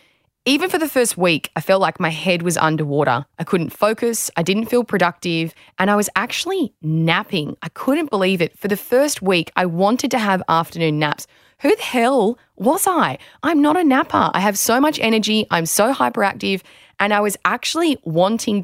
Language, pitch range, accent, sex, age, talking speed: English, 160-210 Hz, Australian, female, 20-39, 195 wpm